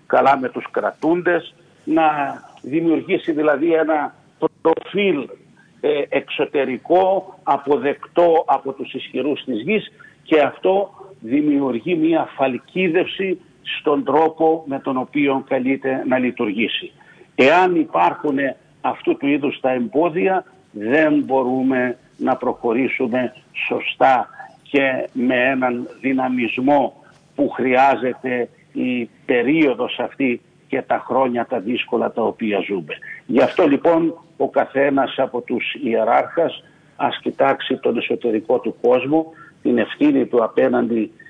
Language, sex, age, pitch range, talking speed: Greek, male, 60-79, 130-215 Hz, 110 wpm